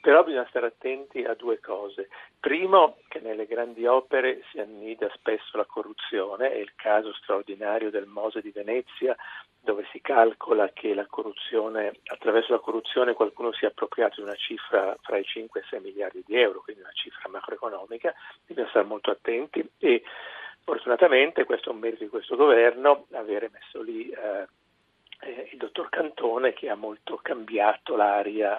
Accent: native